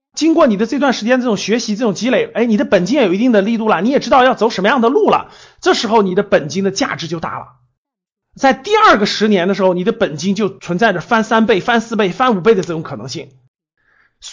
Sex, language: male, Chinese